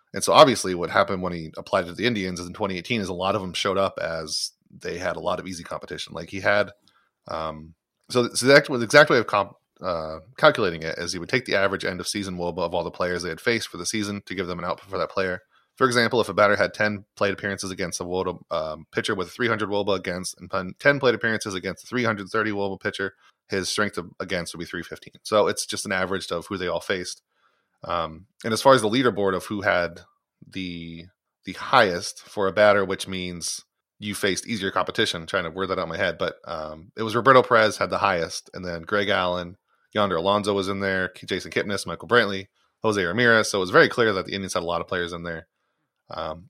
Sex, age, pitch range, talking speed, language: male, 30-49, 90-105 Hz, 240 wpm, English